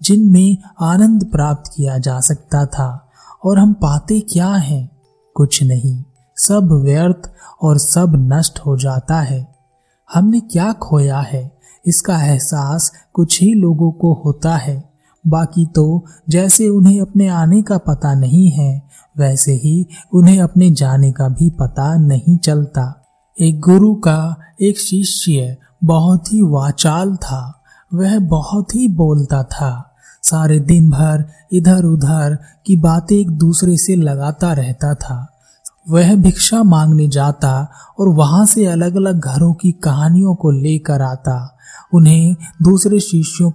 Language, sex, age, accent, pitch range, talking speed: Hindi, male, 20-39, native, 145-180 Hz, 135 wpm